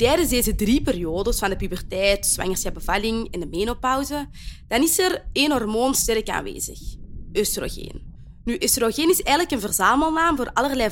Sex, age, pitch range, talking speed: female, 20-39, 195-285 Hz, 150 wpm